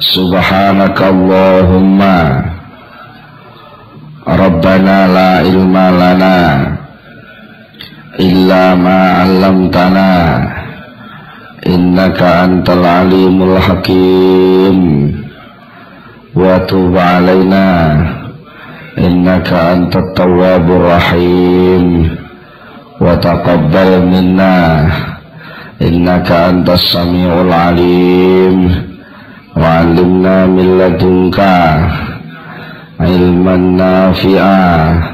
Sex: male